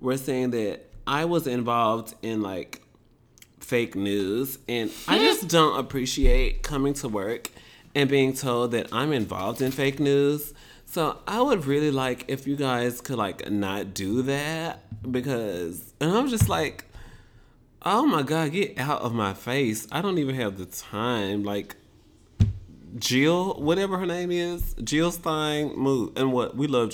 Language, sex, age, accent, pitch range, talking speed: English, male, 30-49, American, 115-150 Hz, 160 wpm